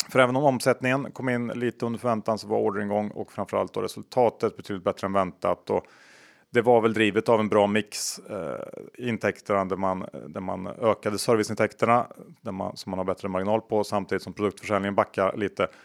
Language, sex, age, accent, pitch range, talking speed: Swedish, male, 30-49, Norwegian, 100-125 Hz, 180 wpm